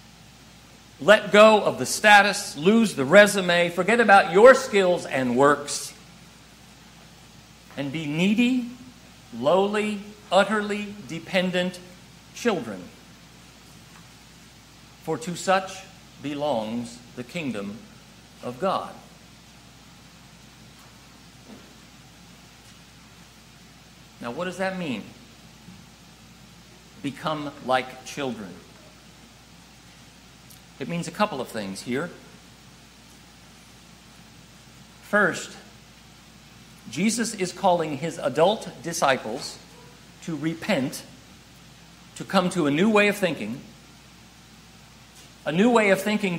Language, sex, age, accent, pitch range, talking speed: English, male, 50-69, American, 145-205 Hz, 85 wpm